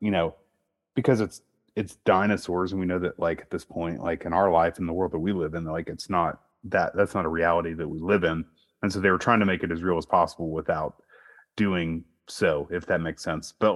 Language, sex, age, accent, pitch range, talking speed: English, male, 30-49, American, 85-110 Hz, 250 wpm